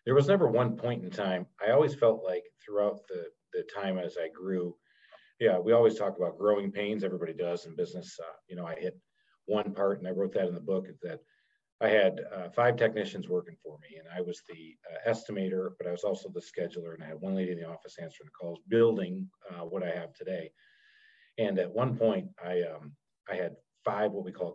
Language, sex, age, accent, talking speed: English, male, 40-59, American, 225 wpm